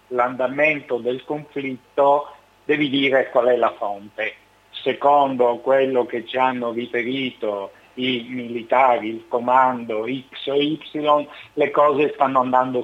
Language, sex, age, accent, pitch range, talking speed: Italian, male, 50-69, native, 120-140 Hz, 120 wpm